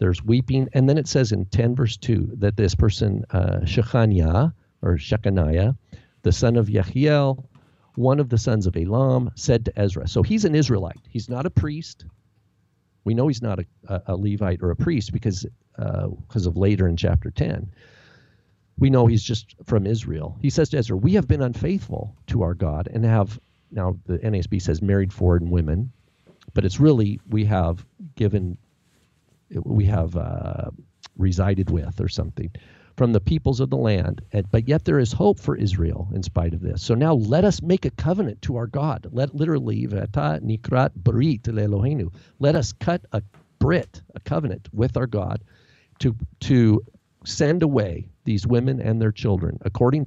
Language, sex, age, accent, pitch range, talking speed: English, male, 50-69, American, 95-125 Hz, 175 wpm